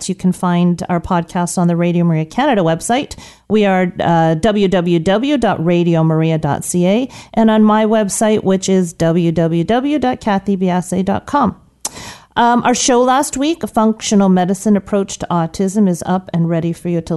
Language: English